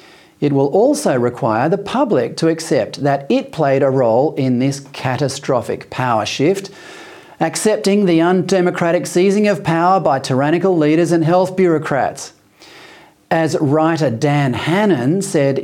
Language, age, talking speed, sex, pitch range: English, 40-59, 135 wpm, male, 130-175 Hz